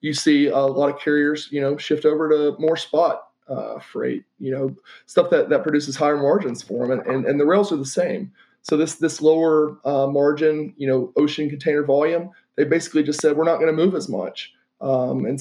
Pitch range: 140-165 Hz